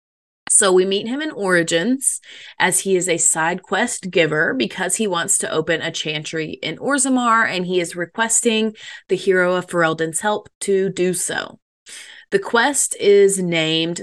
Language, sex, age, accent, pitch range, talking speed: English, female, 20-39, American, 170-225 Hz, 165 wpm